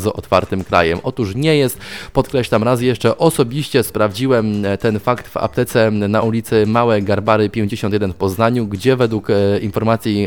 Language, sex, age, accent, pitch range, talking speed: Polish, male, 20-39, native, 105-125 Hz, 145 wpm